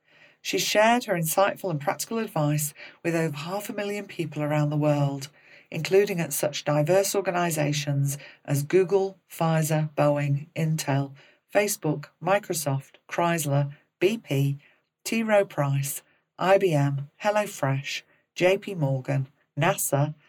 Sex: female